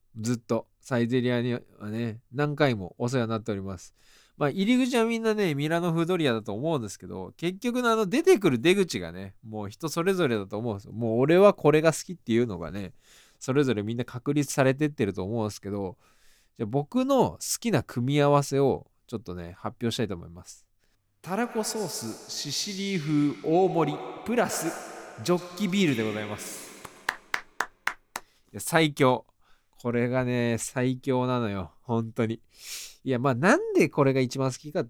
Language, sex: Japanese, male